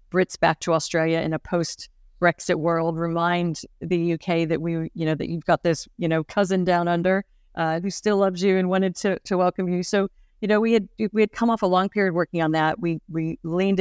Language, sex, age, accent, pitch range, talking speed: English, female, 40-59, American, 160-185 Hz, 230 wpm